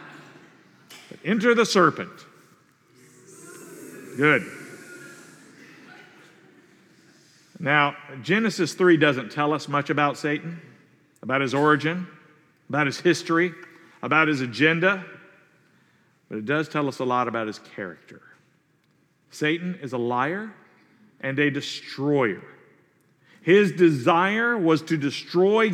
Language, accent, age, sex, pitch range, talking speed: English, American, 50-69, male, 140-180 Hz, 105 wpm